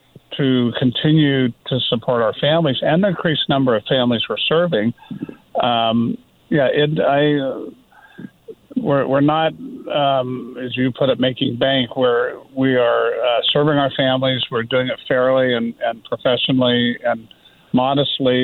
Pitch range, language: 125-145 Hz, English